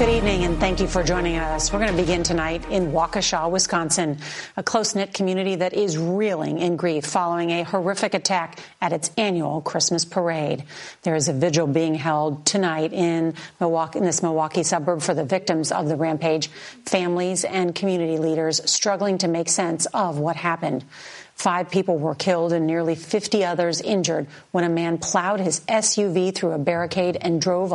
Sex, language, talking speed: female, English, 180 wpm